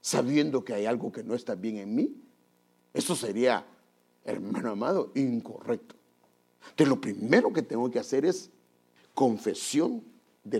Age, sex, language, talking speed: 50-69, male, English, 140 wpm